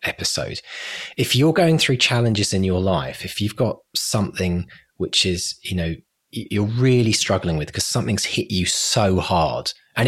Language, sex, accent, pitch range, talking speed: English, male, British, 90-125 Hz, 165 wpm